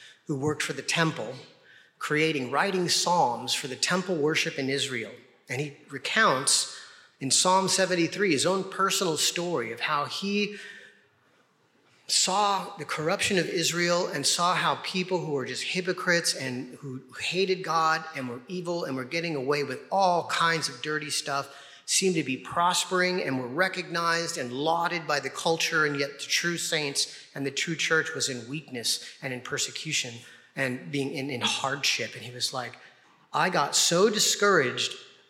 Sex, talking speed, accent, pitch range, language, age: male, 165 wpm, American, 135-175 Hz, English, 40-59